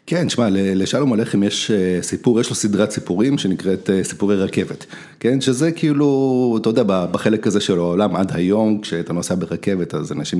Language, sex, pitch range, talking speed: Hebrew, male, 95-115 Hz, 165 wpm